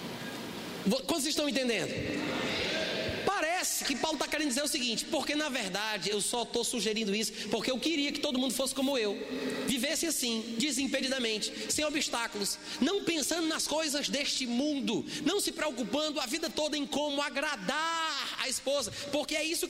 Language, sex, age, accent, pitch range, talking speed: Portuguese, male, 30-49, Brazilian, 235-305 Hz, 160 wpm